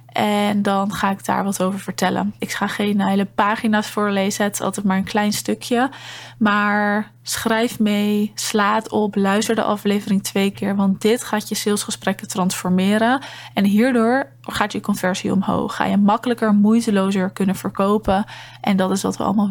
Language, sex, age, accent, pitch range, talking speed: Dutch, female, 20-39, Dutch, 200-230 Hz, 170 wpm